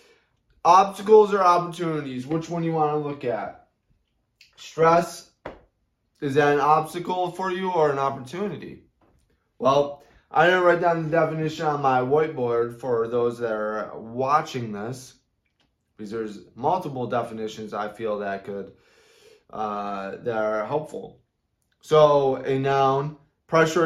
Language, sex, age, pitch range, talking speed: English, male, 20-39, 115-150 Hz, 135 wpm